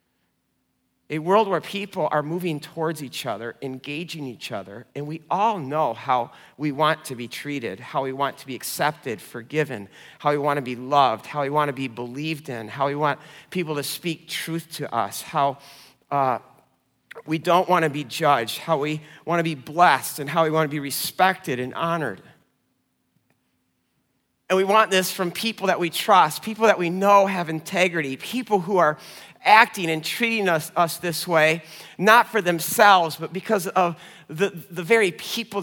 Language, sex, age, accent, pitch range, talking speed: English, male, 40-59, American, 130-175 Hz, 185 wpm